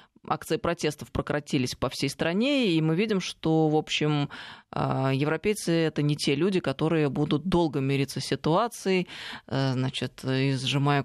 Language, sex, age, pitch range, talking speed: Russian, female, 20-39, 150-195 Hz, 140 wpm